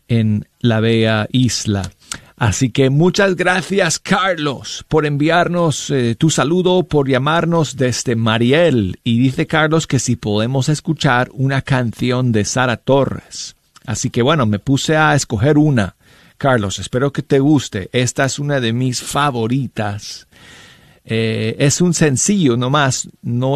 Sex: male